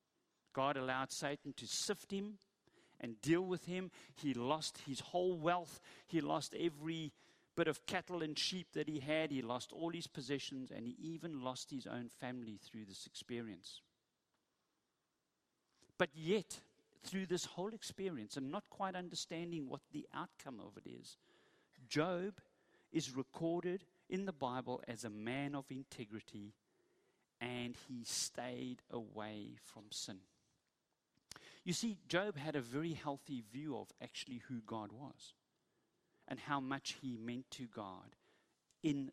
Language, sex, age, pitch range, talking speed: English, male, 50-69, 115-160 Hz, 145 wpm